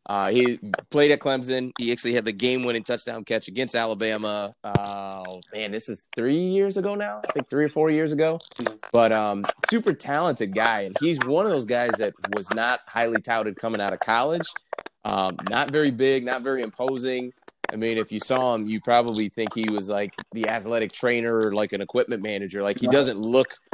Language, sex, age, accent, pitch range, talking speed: English, male, 30-49, American, 105-130 Hz, 200 wpm